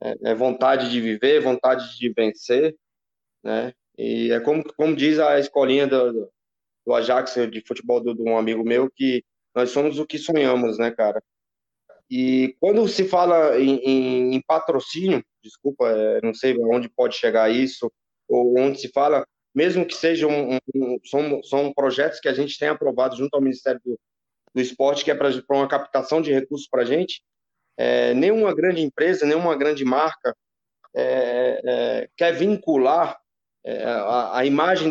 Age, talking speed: 20-39, 170 wpm